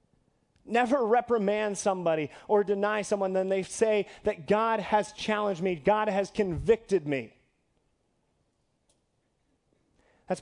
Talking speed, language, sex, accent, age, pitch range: 110 wpm, English, male, American, 30-49, 175-225 Hz